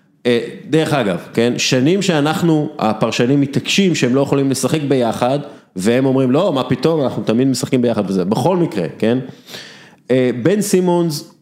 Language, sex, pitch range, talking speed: Hebrew, male, 120-150 Hz, 140 wpm